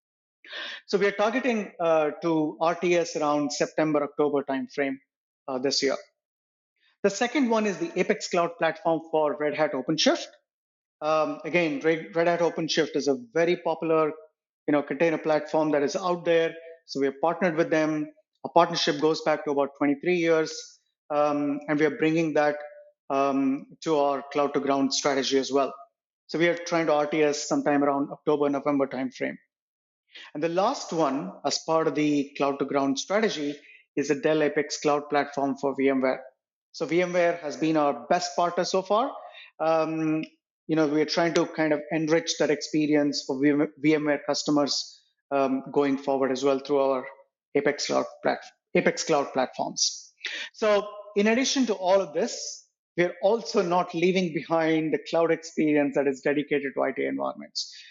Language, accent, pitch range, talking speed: English, Indian, 145-170 Hz, 165 wpm